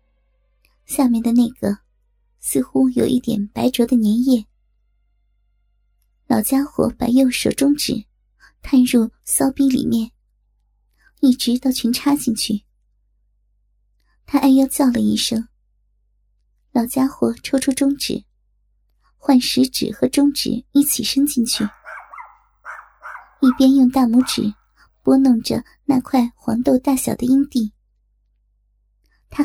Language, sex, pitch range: Chinese, male, 235-275 Hz